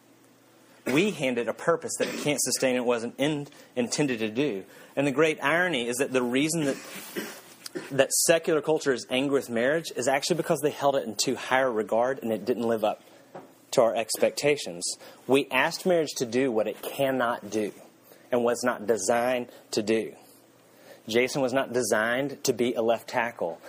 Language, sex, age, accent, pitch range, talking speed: English, male, 30-49, American, 120-150 Hz, 185 wpm